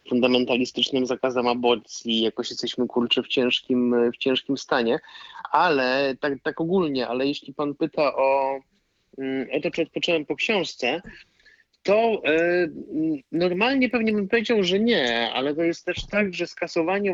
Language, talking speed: Polish, 145 wpm